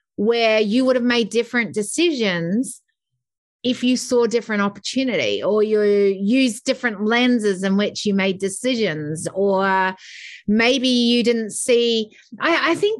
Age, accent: 30-49, Australian